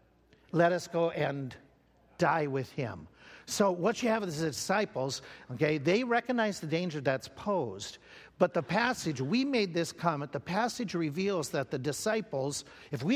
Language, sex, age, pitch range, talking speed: English, male, 50-69, 140-190 Hz, 165 wpm